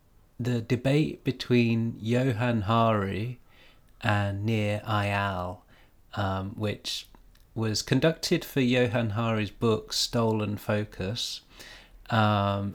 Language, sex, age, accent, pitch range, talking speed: English, male, 30-49, British, 100-115 Hz, 90 wpm